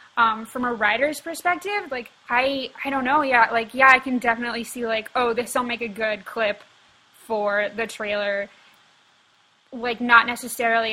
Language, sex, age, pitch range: English, female, 20-39, 215-255 Hz